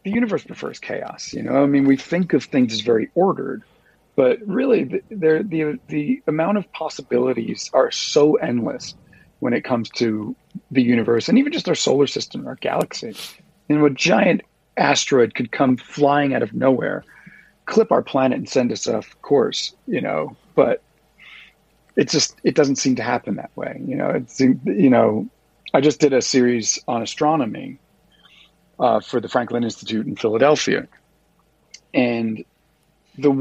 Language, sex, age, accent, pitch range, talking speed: English, male, 40-59, American, 125-160 Hz, 165 wpm